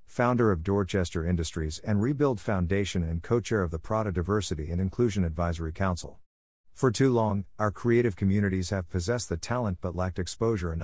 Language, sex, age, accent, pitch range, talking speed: English, male, 50-69, American, 90-115 Hz, 170 wpm